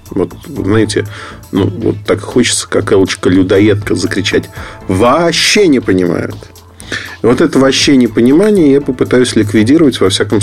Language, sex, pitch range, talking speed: Russian, male, 100-120 Hz, 115 wpm